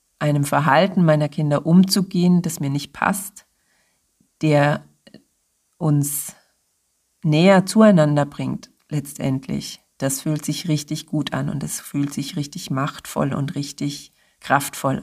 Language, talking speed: German, 120 wpm